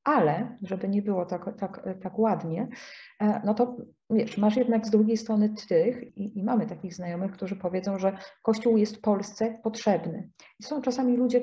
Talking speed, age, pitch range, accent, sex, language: 165 wpm, 40-59, 200-230 Hz, Polish, female, English